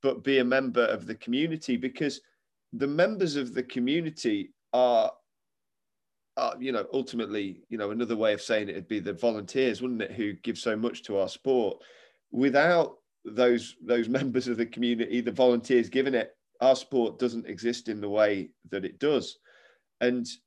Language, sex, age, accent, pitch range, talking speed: English, male, 30-49, British, 110-130 Hz, 175 wpm